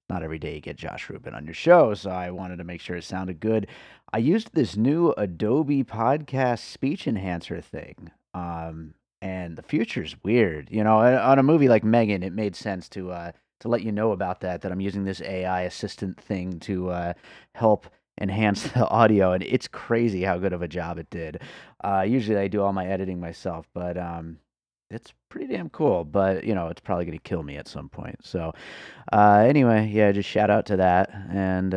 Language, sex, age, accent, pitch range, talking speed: English, male, 30-49, American, 90-110 Hz, 210 wpm